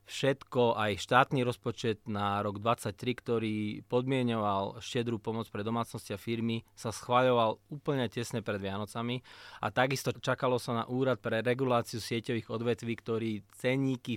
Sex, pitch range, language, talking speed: male, 110-130 Hz, Slovak, 140 wpm